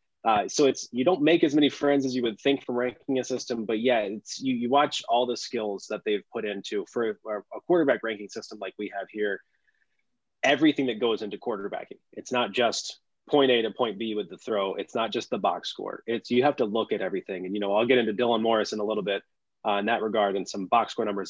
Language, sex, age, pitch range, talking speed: English, male, 20-39, 105-135 Hz, 255 wpm